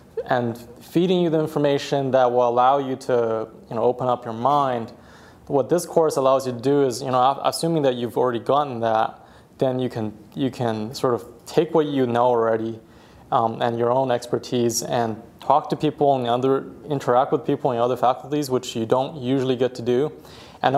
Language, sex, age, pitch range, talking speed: English, male, 20-39, 115-140 Hz, 200 wpm